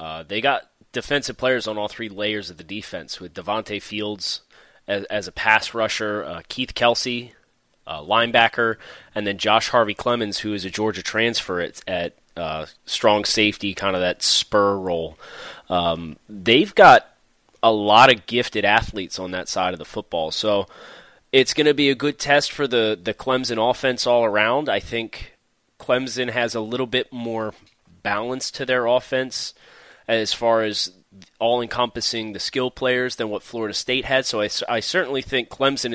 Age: 30-49